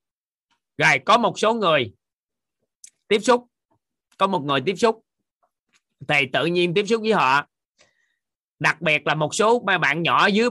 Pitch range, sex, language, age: 140-190 Hz, male, Vietnamese, 20-39